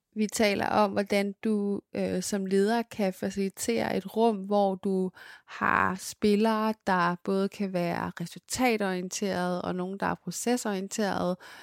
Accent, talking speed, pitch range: Danish, 135 wpm, 185-210 Hz